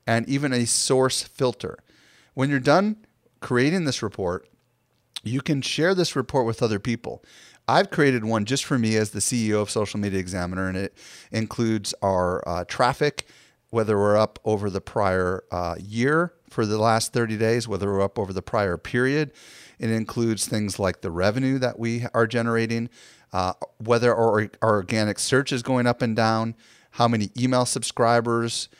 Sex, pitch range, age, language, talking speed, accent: male, 105-130 Hz, 40-59, English, 175 wpm, American